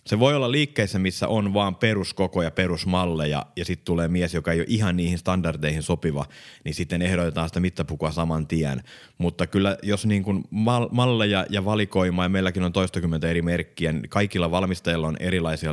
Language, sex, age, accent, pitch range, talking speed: Finnish, male, 30-49, native, 80-105 Hz, 170 wpm